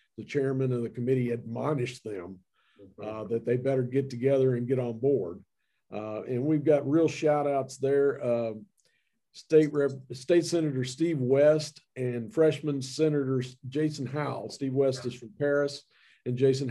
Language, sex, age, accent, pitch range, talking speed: English, male, 50-69, American, 120-150 Hz, 160 wpm